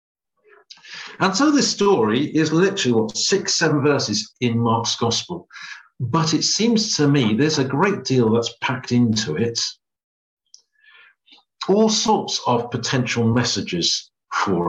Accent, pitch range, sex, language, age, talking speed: British, 110-165 Hz, male, English, 50-69, 130 wpm